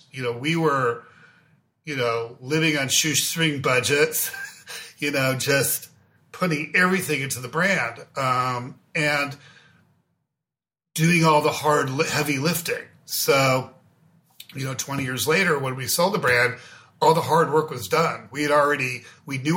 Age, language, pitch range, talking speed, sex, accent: 50-69, English, 130-160 Hz, 145 wpm, male, American